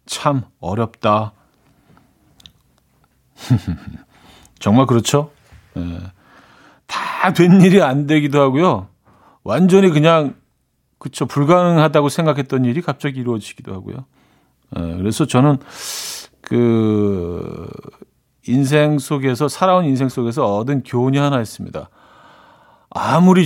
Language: Korean